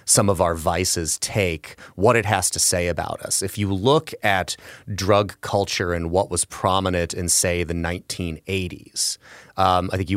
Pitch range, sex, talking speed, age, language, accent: 90-110 Hz, male, 175 wpm, 30-49, English, American